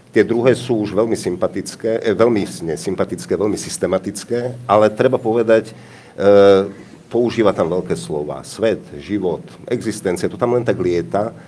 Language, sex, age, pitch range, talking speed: Slovak, male, 50-69, 85-110 Hz, 135 wpm